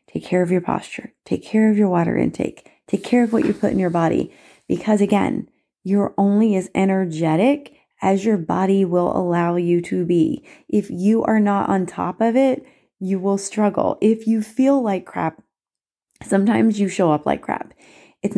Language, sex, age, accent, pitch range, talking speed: English, female, 30-49, American, 175-215 Hz, 185 wpm